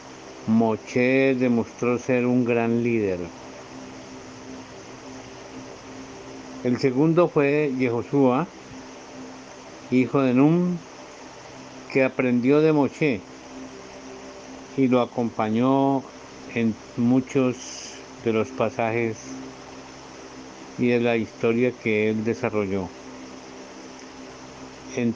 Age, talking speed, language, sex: 60-79, 80 wpm, Spanish, male